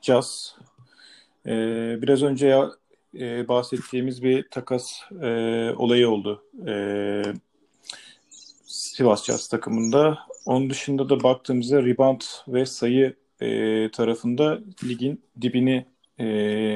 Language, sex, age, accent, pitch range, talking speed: Turkish, male, 40-59, native, 120-145 Hz, 100 wpm